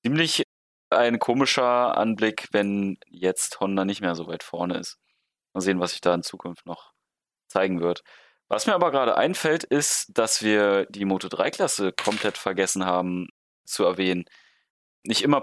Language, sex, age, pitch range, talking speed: German, male, 30-49, 95-115 Hz, 155 wpm